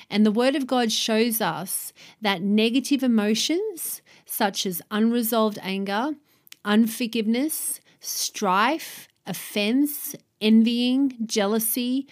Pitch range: 195-240 Hz